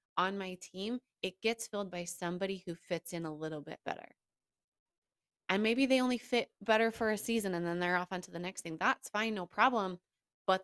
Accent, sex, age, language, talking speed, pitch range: American, female, 20-39, English, 210 wpm, 175-225 Hz